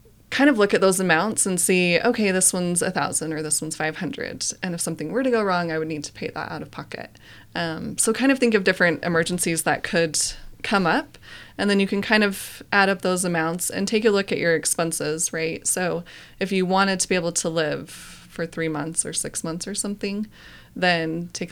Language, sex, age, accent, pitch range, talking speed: English, female, 20-39, American, 160-200 Hz, 230 wpm